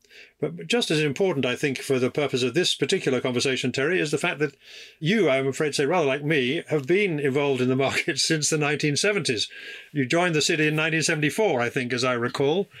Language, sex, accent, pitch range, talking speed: English, male, British, 115-150 Hz, 215 wpm